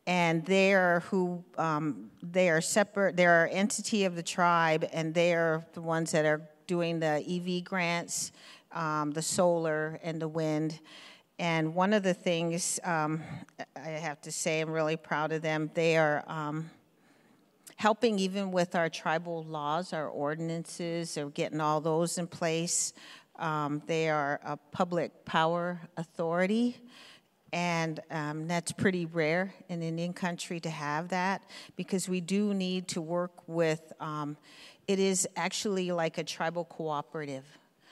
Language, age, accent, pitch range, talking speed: English, 50-69, American, 155-180 Hz, 150 wpm